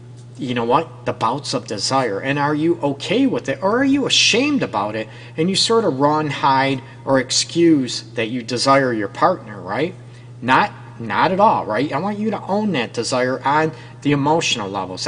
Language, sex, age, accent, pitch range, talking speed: English, male, 40-59, American, 120-145 Hz, 195 wpm